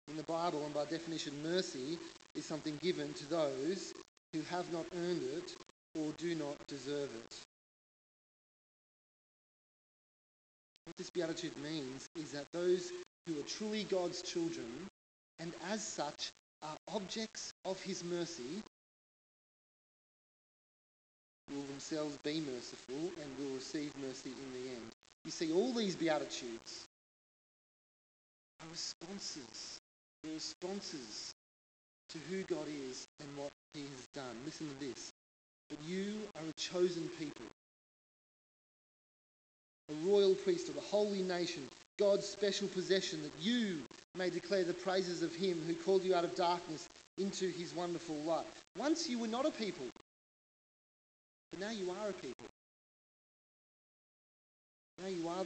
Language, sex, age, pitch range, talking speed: English, male, 30-49, 150-200 Hz, 130 wpm